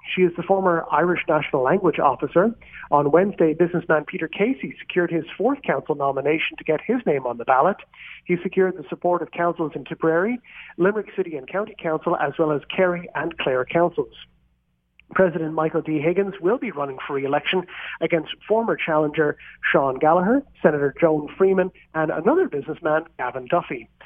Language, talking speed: English, 165 wpm